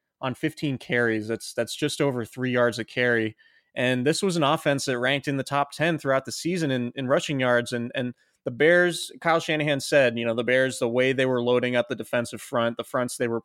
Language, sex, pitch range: English, male, 120-140 Hz